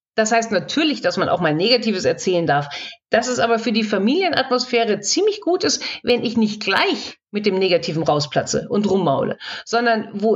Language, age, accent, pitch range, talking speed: German, 50-69, German, 190-270 Hz, 180 wpm